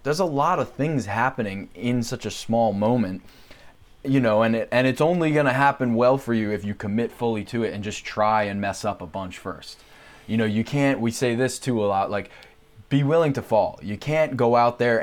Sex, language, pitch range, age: male, English, 105-125 Hz, 20-39